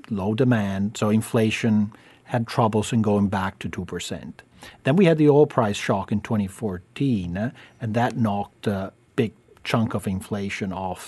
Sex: male